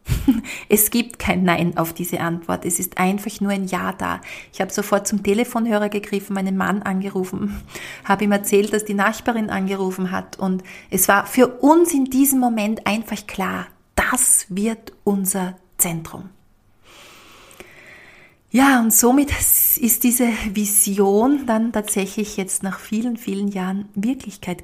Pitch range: 185-210 Hz